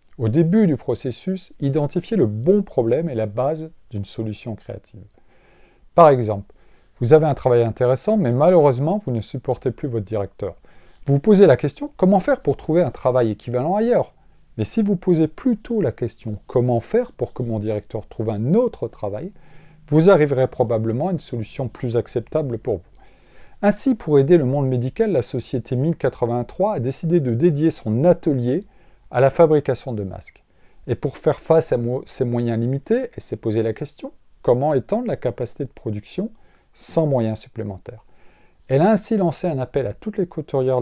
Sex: male